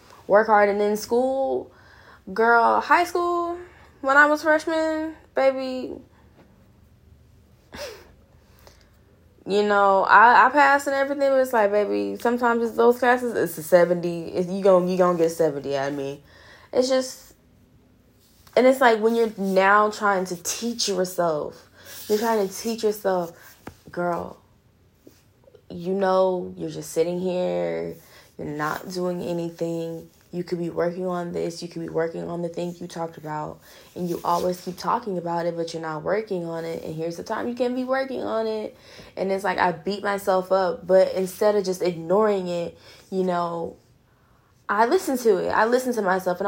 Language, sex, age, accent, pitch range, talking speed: English, female, 10-29, American, 175-235 Hz, 170 wpm